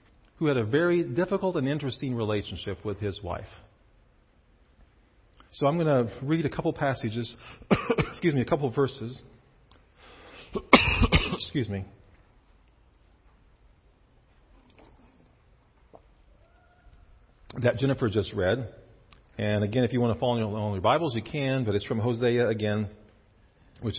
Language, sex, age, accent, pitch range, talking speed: English, male, 50-69, American, 100-130 Hz, 120 wpm